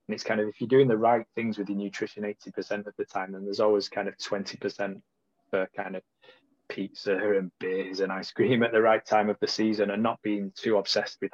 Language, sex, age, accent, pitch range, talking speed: English, male, 20-39, British, 100-130 Hz, 240 wpm